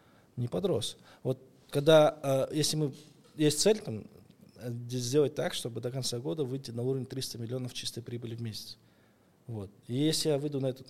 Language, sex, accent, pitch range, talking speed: Russian, male, native, 115-140 Hz, 170 wpm